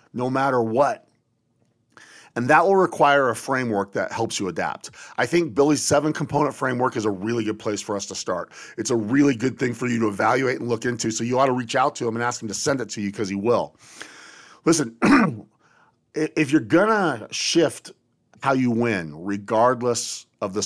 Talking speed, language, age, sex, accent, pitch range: 205 wpm, English, 40-59, male, American, 110-140 Hz